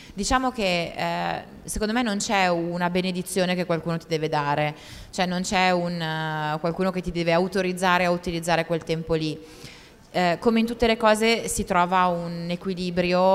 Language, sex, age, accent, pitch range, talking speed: Italian, female, 20-39, native, 165-195 Hz, 175 wpm